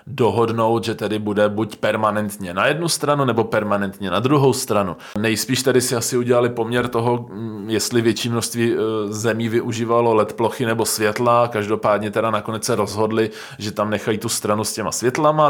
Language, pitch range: Czech, 105-120 Hz